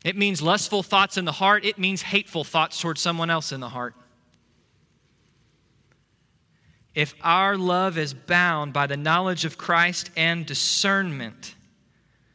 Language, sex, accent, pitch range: English, male, American, 150-185 Hz